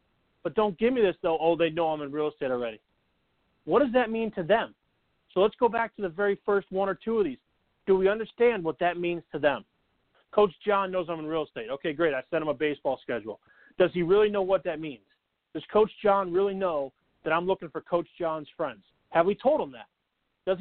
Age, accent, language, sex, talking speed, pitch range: 40-59, American, English, male, 235 wpm, 175-210 Hz